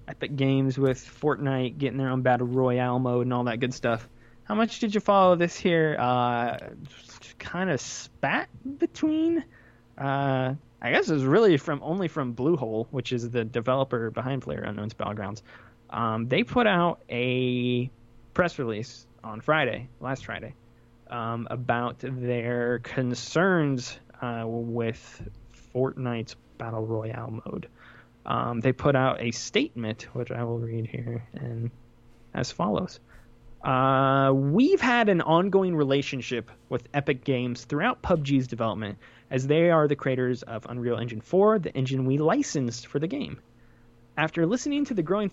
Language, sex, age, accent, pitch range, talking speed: English, male, 20-39, American, 120-160 Hz, 150 wpm